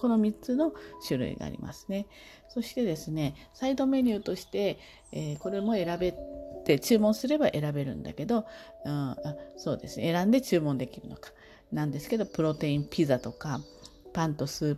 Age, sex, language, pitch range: 40-59, female, Japanese, 135-200 Hz